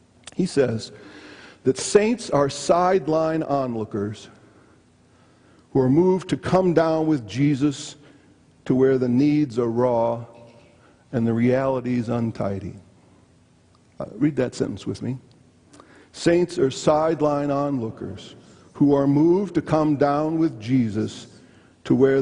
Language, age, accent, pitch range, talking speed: English, 50-69, American, 115-145 Hz, 120 wpm